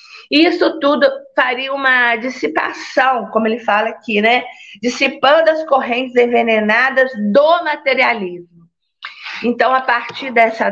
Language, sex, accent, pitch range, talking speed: Portuguese, female, Brazilian, 225-280 Hz, 110 wpm